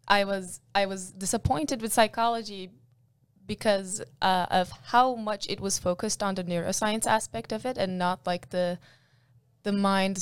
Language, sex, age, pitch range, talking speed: English, female, 20-39, 170-205 Hz, 160 wpm